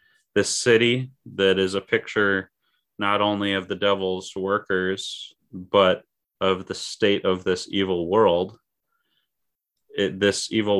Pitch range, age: 95-110 Hz, 30-49